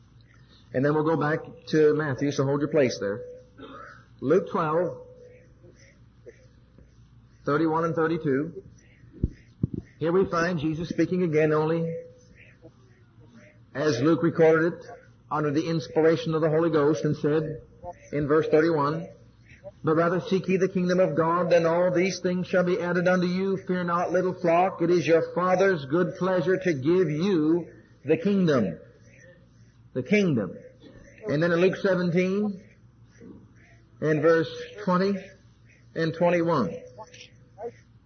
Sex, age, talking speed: male, 40-59, 135 wpm